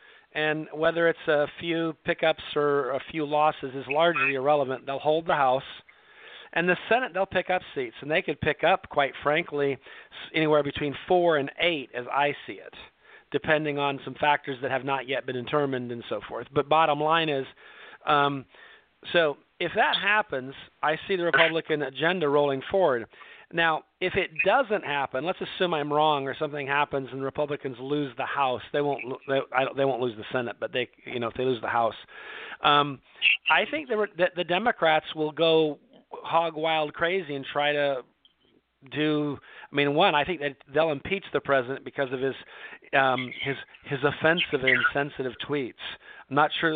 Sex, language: male, English